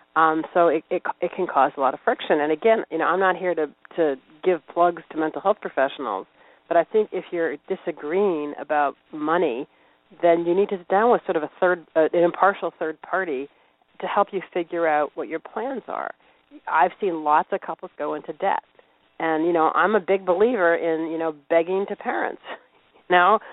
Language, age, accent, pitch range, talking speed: English, 40-59, American, 155-190 Hz, 205 wpm